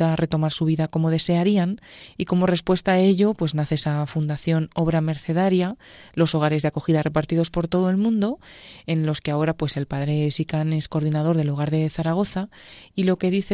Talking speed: 195 wpm